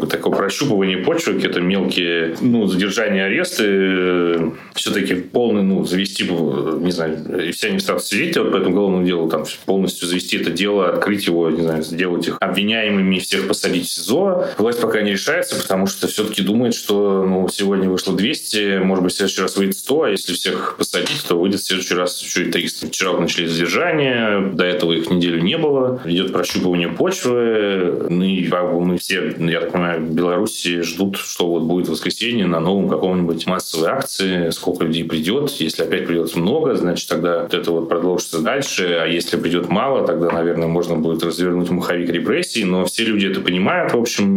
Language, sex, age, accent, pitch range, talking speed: Russian, male, 30-49, native, 85-95 Hz, 175 wpm